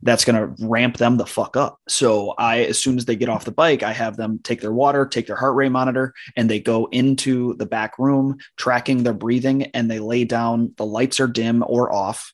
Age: 20-39